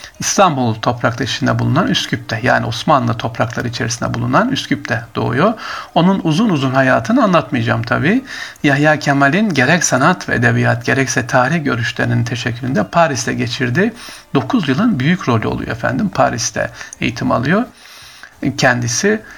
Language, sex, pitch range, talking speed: Turkish, male, 125-165 Hz, 125 wpm